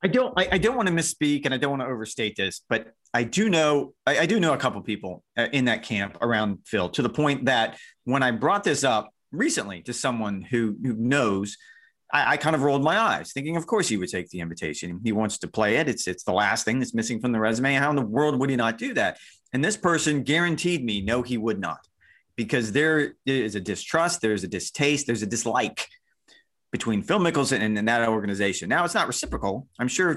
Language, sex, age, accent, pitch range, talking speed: English, male, 30-49, American, 110-155 Hz, 235 wpm